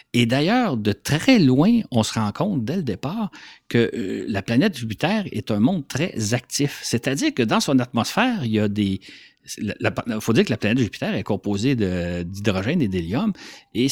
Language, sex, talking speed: French, male, 195 wpm